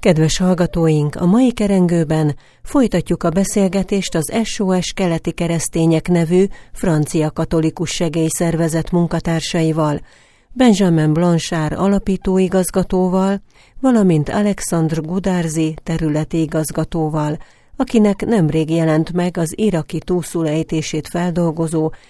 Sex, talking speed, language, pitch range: female, 90 wpm, Hungarian, 160-185 Hz